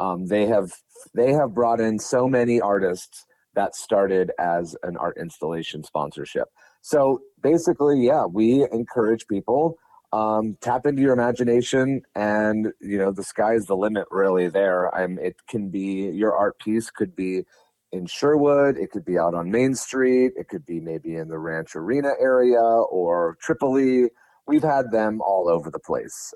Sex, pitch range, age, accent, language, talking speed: male, 95-120 Hz, 30-49, American, English, 170 wpm